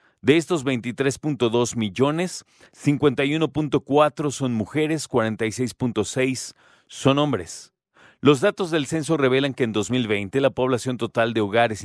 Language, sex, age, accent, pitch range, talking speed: Spanish, male, 40-59, Mexican, 110-130 Hz, 115 wpm